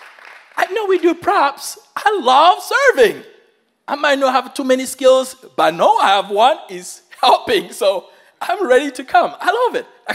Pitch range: 205-330 Hz